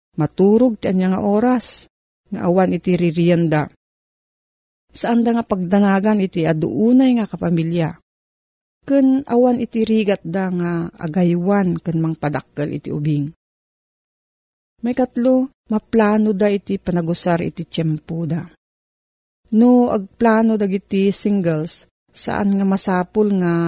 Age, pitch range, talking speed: 40-59, 170-225 Hz, 115 wpm